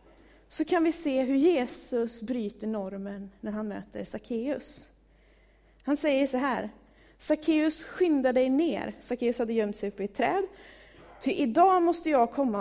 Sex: female